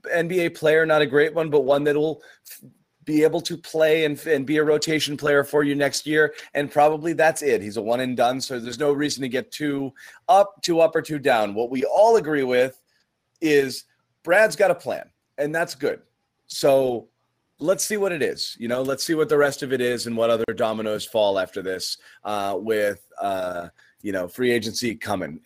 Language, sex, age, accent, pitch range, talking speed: English, male, 30-49, American, 115-155 Hz, 210 wpm